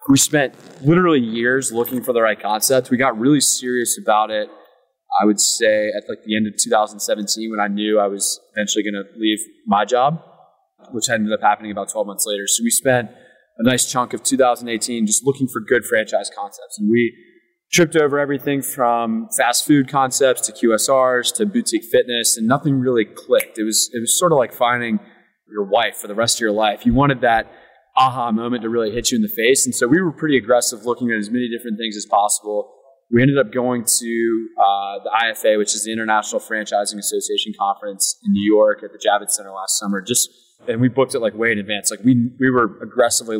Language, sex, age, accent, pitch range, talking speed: English, male, 20-39, American, 105-135 Hz, 215 wpm